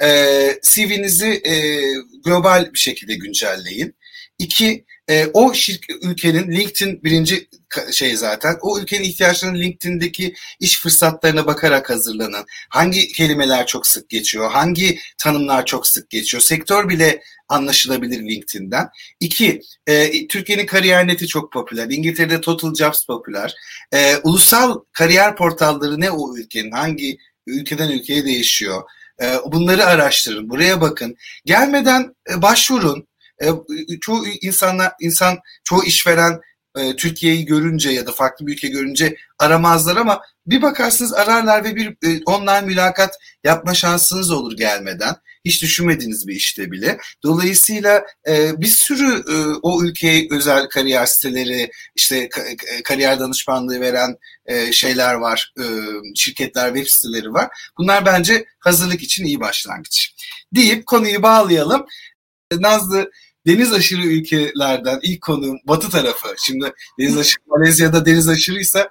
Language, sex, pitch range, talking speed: Turkish, male, 140-195 Hz, 120 wpm